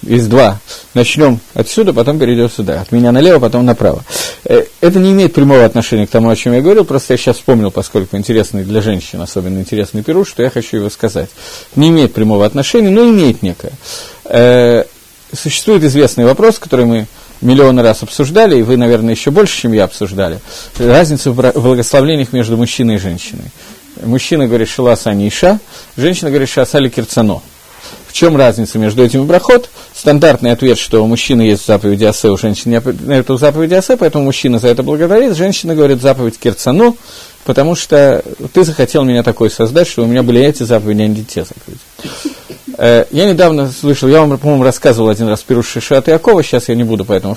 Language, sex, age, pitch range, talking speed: Russian, male, 40-59, 115-150 Hz, 180 wpm